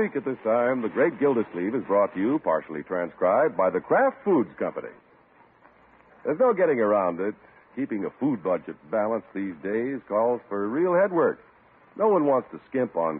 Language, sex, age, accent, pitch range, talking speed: English, male, 60-79, American, 115-190 Hz, 175 wpm